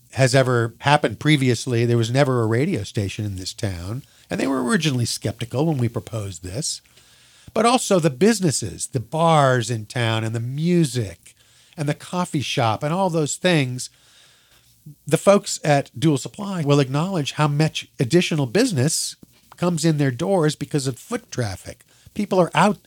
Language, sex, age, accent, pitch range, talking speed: English, male, 50-69, American, 115-155 Hz, 165 wpm